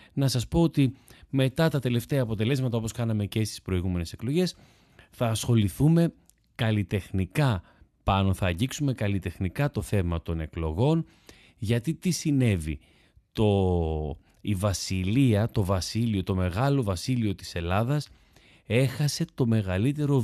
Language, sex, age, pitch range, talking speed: Greek, male, 30-49, 95-135 Hz, 120 wpm